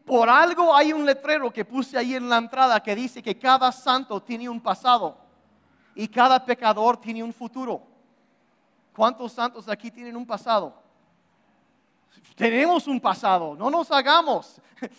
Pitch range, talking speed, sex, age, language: 225-300 Hz, 150 wpm, male, 40-59, Spanish